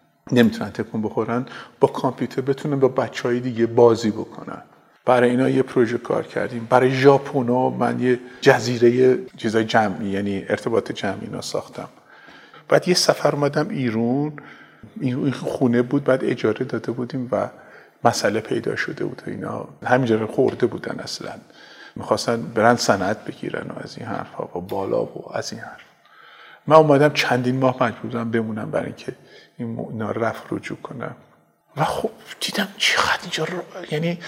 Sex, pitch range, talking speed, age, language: male, 125-160 Hz, 155 wpm, 50-69, Persian